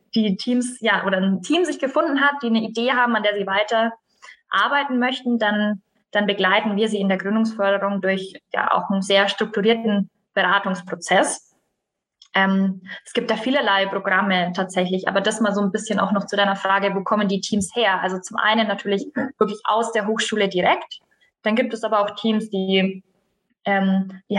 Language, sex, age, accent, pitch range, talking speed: German, female, 20-39, German, 190-225 Hz, 185 wpm